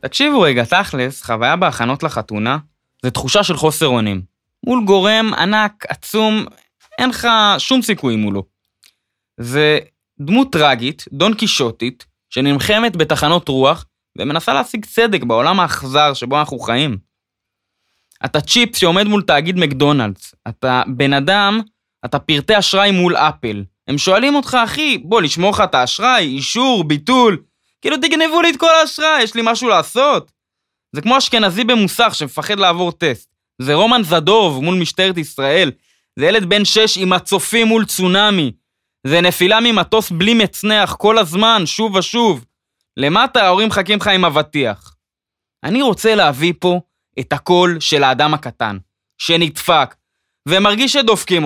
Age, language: 20-39, Hebrew